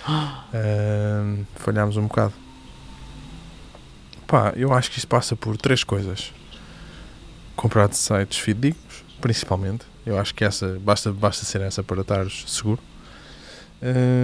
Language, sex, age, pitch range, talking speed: Portuguese, male, 20-39, 100-120 Hz, 125 wpm